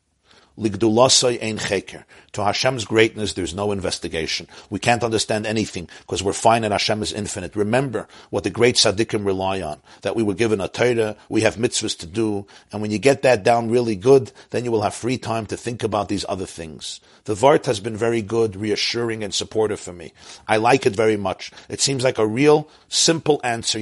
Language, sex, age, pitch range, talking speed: English, male, 50-69, 100-120 Hz, 195 wpm